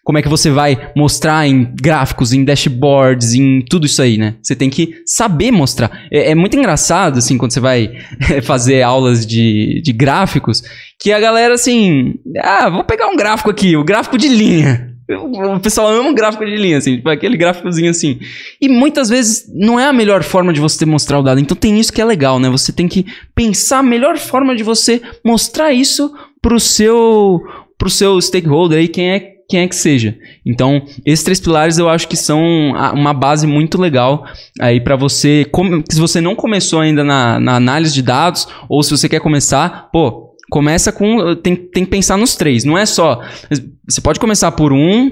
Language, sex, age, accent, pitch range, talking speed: Portuguese, male, 10-29, Brazilian, 140-205 Hz, 195 wpm